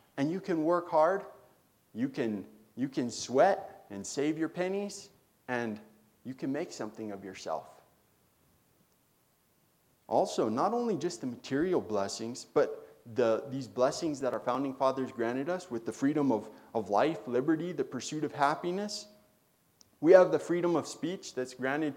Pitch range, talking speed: 125-175 Hz, 155 wpm